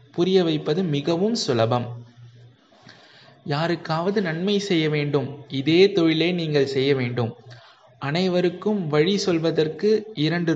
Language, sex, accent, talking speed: Tamil, male, native, 95 wpm